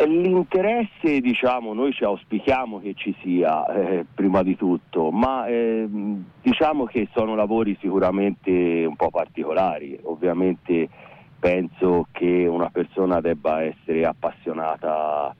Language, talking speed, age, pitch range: Italian, 115 wpm, 40-59, 85-110 Hz